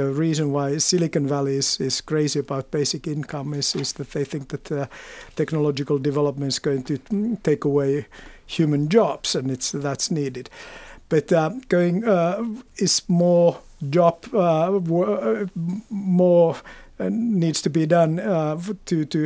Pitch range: 145-185 Hz